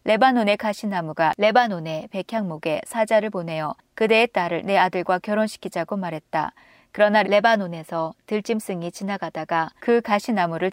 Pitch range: 170-220 Hz